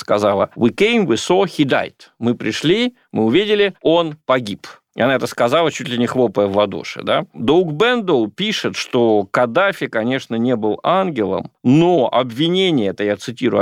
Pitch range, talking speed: 110-160 Hz, 165 wpm